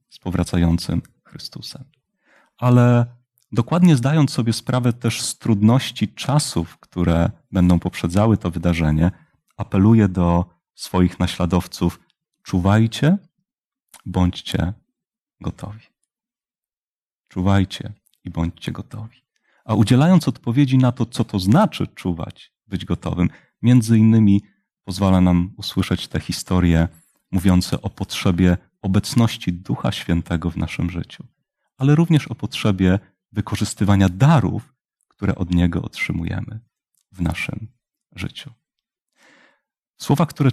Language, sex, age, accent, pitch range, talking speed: Polish, male, 30-49, native, 90-120 Hz, 105 wpm